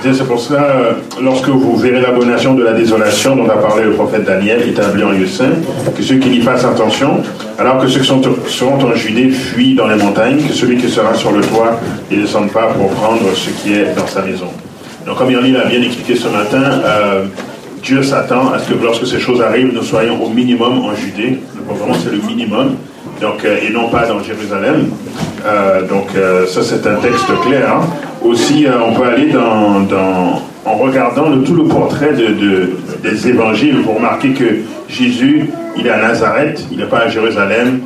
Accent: French